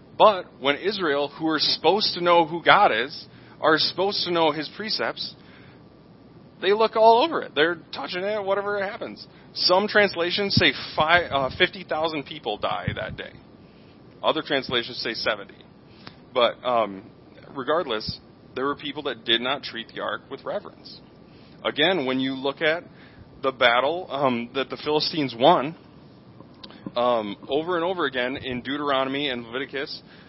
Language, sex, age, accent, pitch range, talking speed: English, male, 30-49, American, 125-175 Hz, 145 wpm